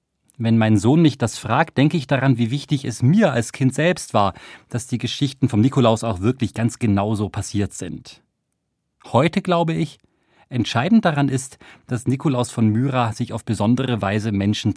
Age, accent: 40-59, German